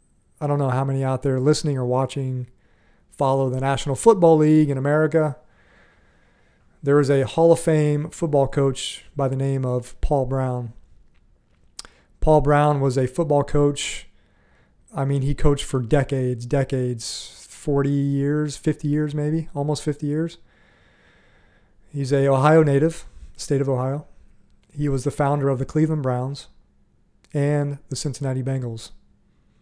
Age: 40-59